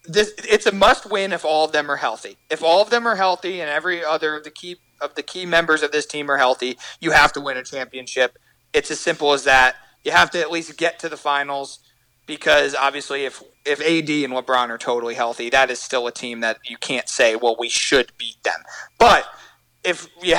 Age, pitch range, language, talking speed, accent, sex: 30-49, 135-170 Hz, English, 230 wpm, American, male